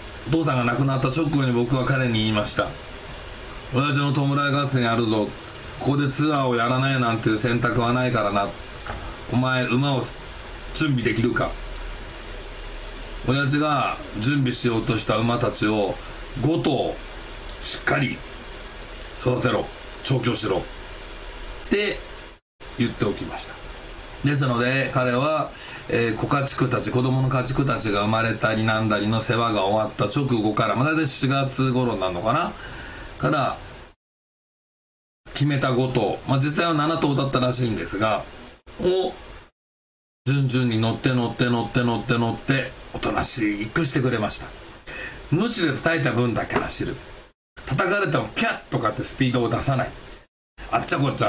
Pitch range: 115-135 Hz